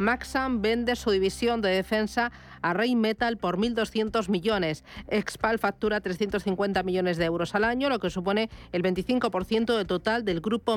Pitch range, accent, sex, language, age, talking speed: 185-225 Hz, Spanish, female, Spanish, 40-59, 160 wpm